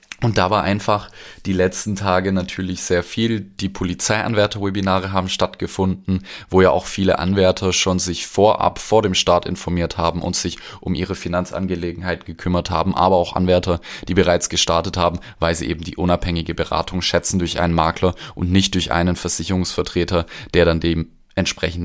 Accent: German